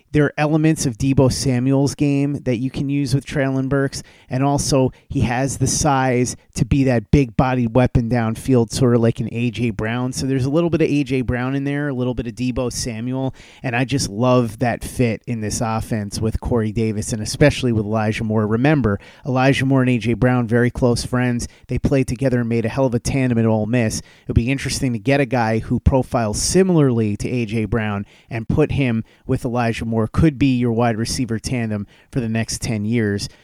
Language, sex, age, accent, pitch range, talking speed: English, male, 30-49, American, 110-135 Hz, 215 wpm